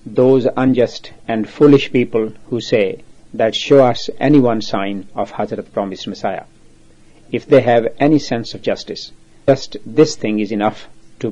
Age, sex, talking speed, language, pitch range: 50-69, male, 160 wpm, English, 80-115 Hz